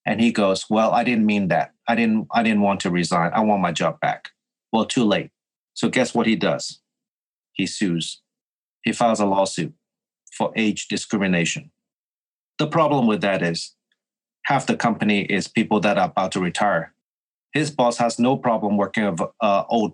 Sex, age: male, 30-49